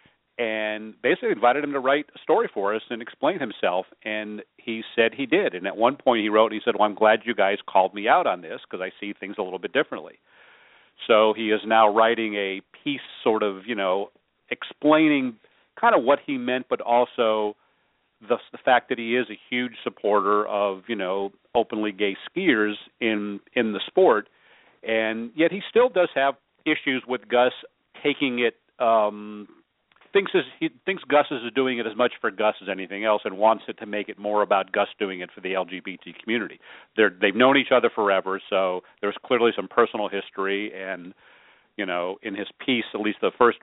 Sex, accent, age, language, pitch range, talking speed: male, American, 40-59, English, 105-130 Hz, 195 wpm